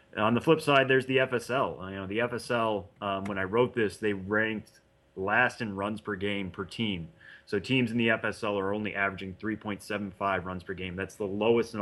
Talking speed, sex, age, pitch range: 210 wpm, male, 30-49, 100-120 Hz